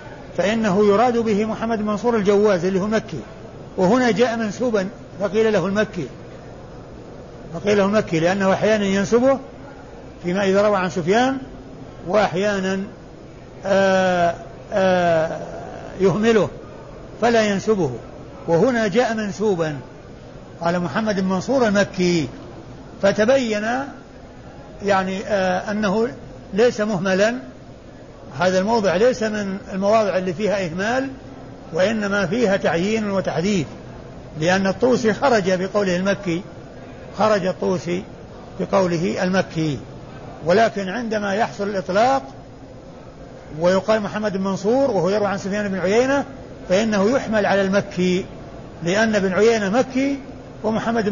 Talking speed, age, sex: 100 wpm, 60-79, male